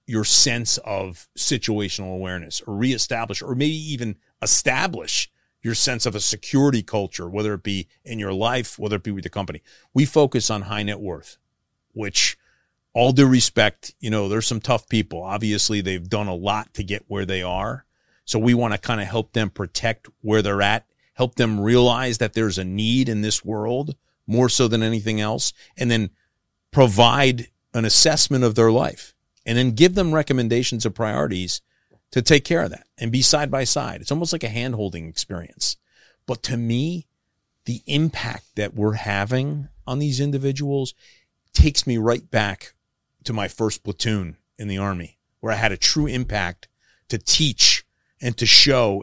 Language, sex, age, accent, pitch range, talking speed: English, male, 40-59, American, 100-125 Hz, 175 wpm